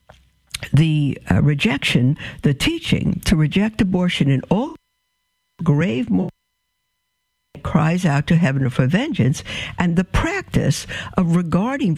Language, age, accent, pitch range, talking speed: English, 60-79, American, 140-180 Hz, 115 wpm